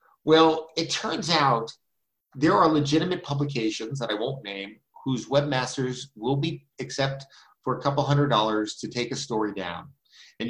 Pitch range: 115-145 Hz